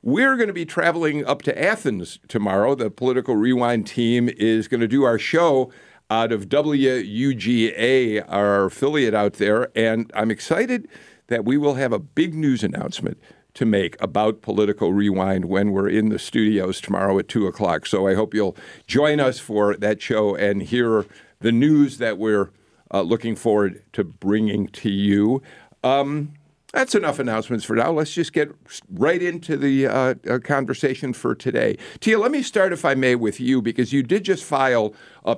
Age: 50-69